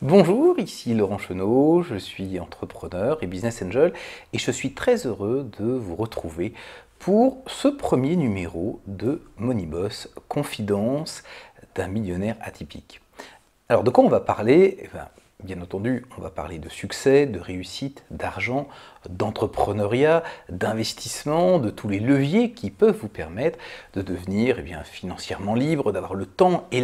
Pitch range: 95-145 Hz